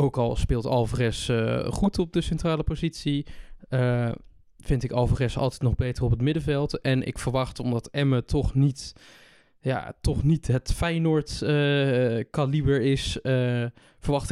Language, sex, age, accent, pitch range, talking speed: Dutch, male, 20-39, Dutch, 120-145 Hz, 155 wpm